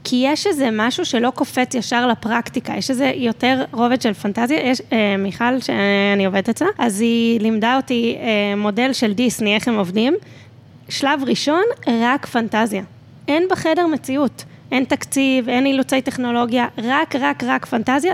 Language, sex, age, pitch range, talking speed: Hebrew, female, 20-39, 220-270 Hz, 155 wpm